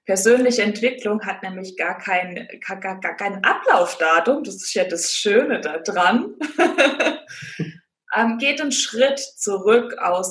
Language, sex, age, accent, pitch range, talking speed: German, female, 20-39, German, 200-255 Hz, 130 wpm